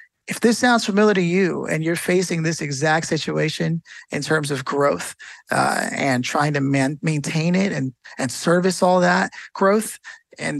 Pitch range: 145-180 Hz